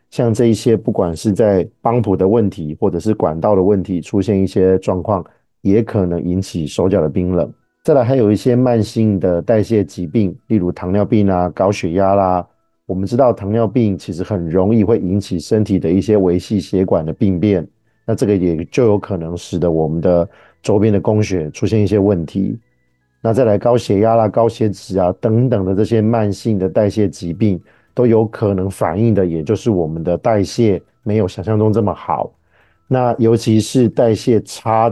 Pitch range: 95-110 Hz